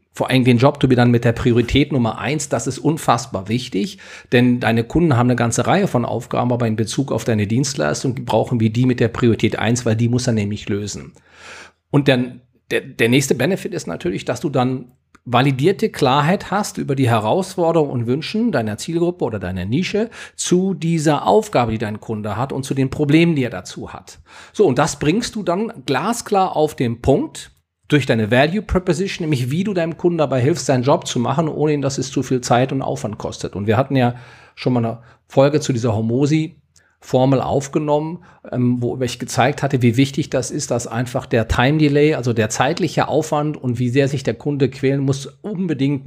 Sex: male